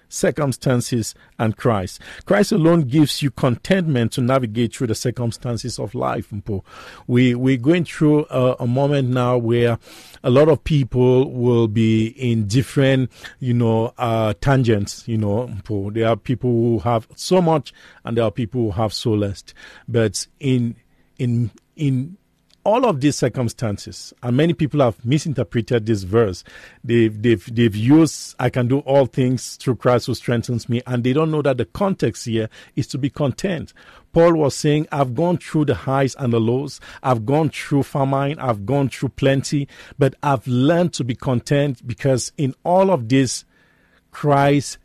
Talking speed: 165 wpm